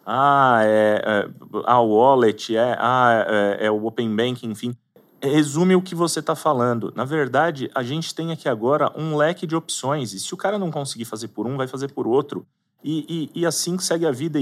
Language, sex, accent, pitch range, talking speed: Portuguese, male, Brazilian, 110-150 Hz, 205 wpm